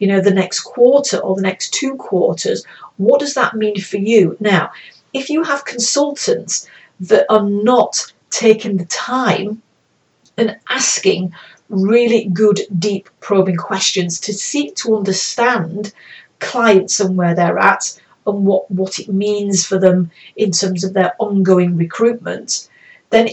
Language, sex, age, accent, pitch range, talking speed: English, female, 40-59, British, 185-230 Hz, 145 wpm